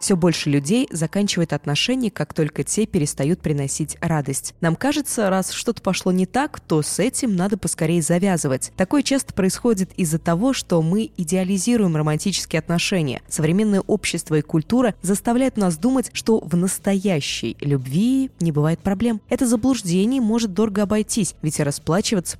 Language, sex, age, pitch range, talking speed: Russian, female, 20-39, 155-210 Hz, 145 wpm